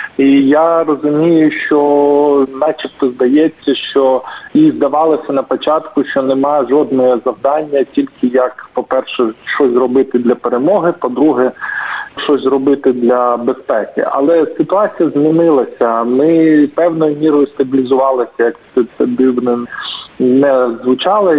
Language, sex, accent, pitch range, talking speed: Ukrainian, male, native, 130-160 Hz, 110 wpm